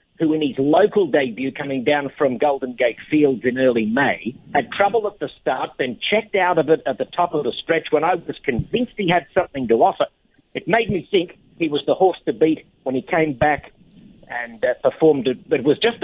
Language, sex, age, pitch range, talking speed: English, male, 50-69, 140-205 Hz, 225 wpm